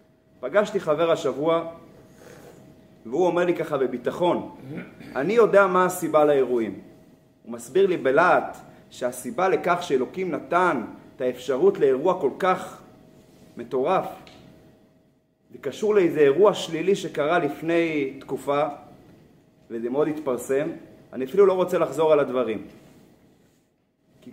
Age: 30-49